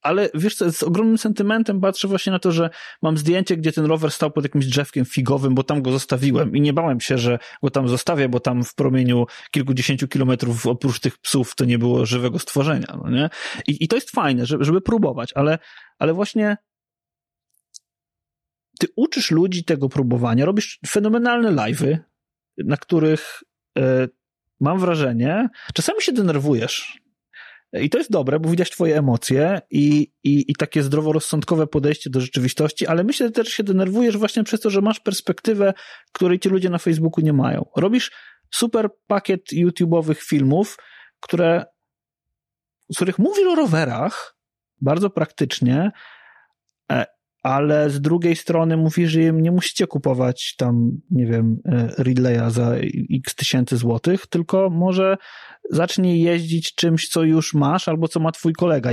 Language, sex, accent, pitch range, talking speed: Polish, male, native, 135-185 Hz, 155 wpm